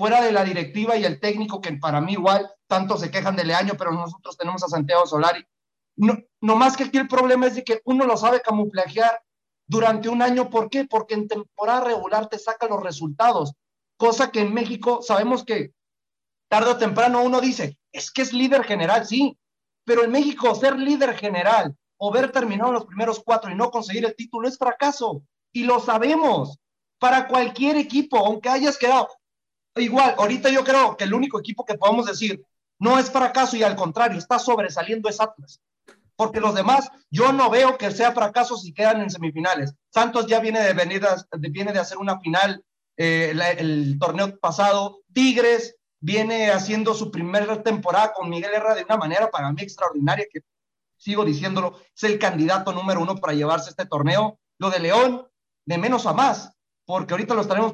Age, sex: 40-59, male